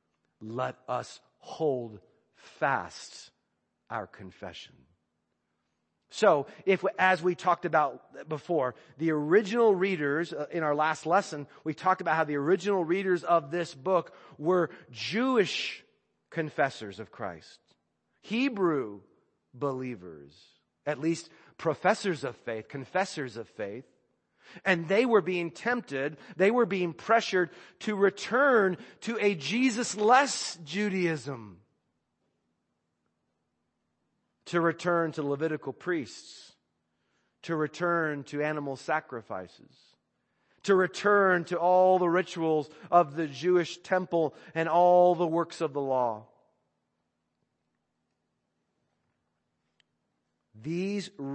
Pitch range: 115-180 Hz